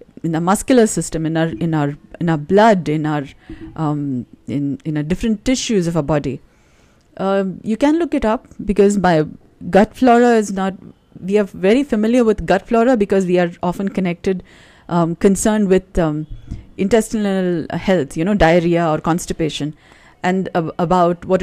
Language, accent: English, Indian